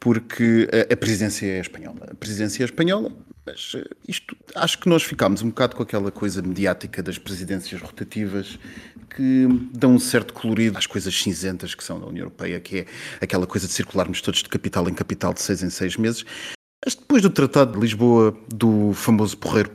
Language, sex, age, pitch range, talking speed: Portuguese, male, 30-49, 100-150 Hz, 195 wpm